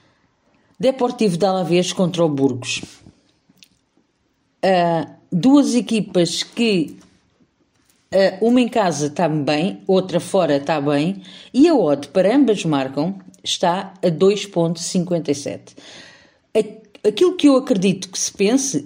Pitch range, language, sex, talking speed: 165-220 Hz, Portuguese, female, 115 wpm